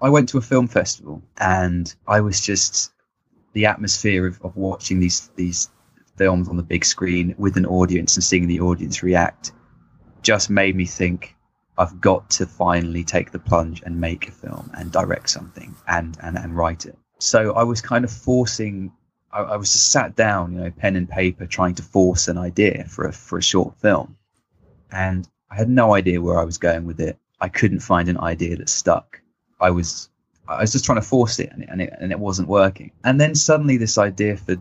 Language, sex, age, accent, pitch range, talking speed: English, male, 20-39, British, 90-110 Hz, 210 wpm